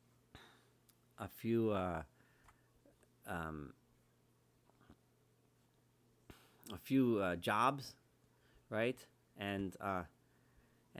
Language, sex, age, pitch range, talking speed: English, male, 40-59, 95-120 Hz, 60 wpm